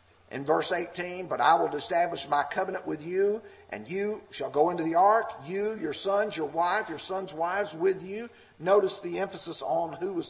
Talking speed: 200 wpm